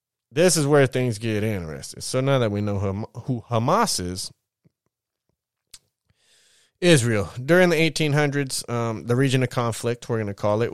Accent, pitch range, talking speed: American, 105-130 Hz, 155 wpm